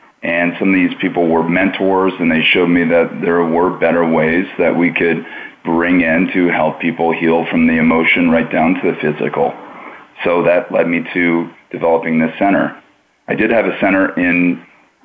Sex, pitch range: male, 85-95 Hz